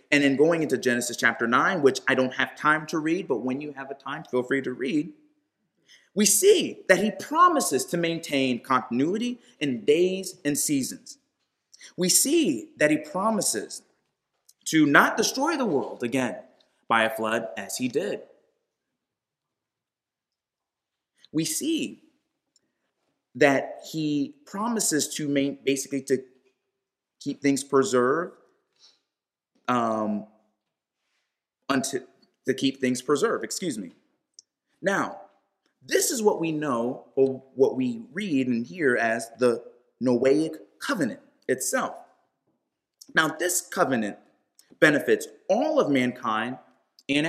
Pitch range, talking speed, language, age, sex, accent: 125-215 Hz, 125 wpm, English, 30-49, male, American